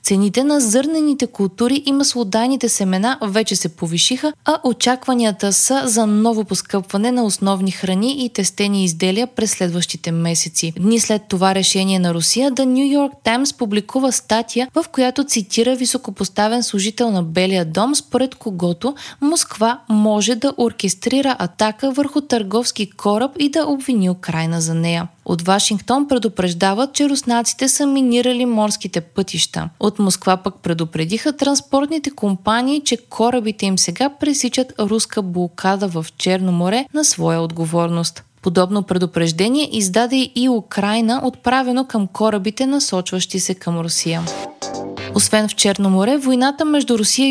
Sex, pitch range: female, 190-255 Hz